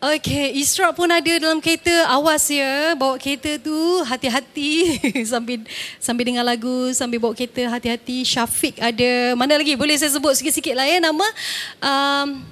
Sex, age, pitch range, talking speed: female, 30-49, 235-290 Hz, 155 wpm